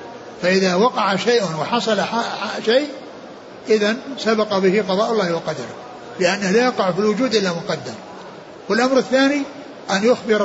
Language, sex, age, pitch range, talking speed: Arabic, male, 60-79, 190-235 Hz, 140 wpm